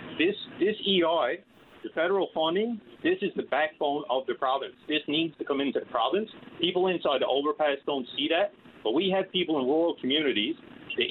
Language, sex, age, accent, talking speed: English, male, 30-49, American, 190 wpm